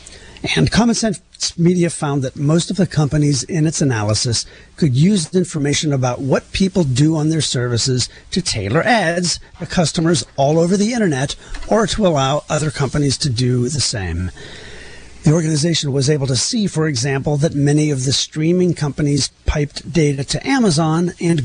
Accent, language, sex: American, English, male